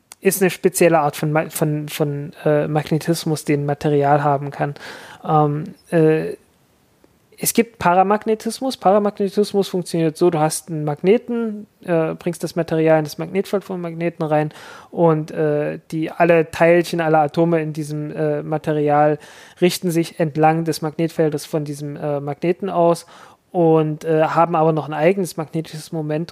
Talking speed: 145 wpm